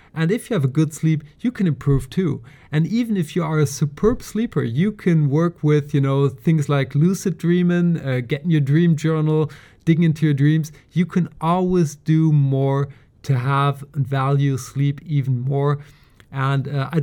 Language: English